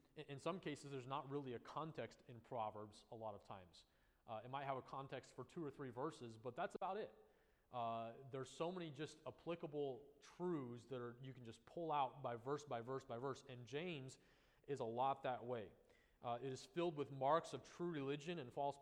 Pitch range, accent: 120-140 Hz, American